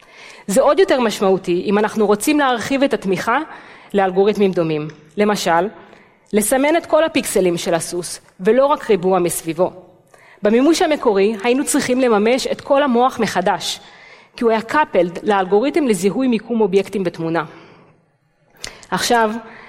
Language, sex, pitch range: Hebrew, female, 190-260 Hz